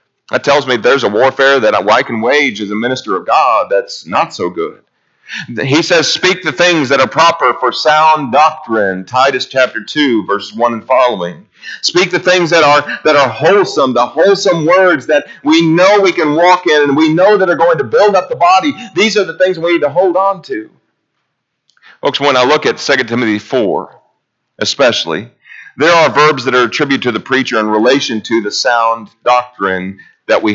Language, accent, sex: English, American, male